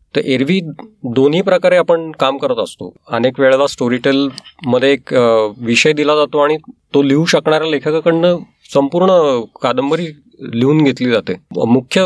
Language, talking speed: Marathi, 105 wpm